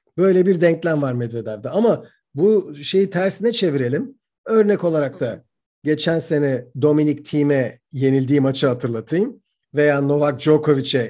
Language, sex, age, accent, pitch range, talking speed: Turkish, male, 50-69, native, 145-195 Hz, 125 wpm